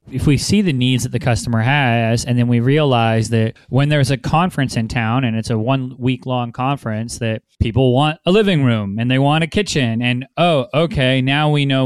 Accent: American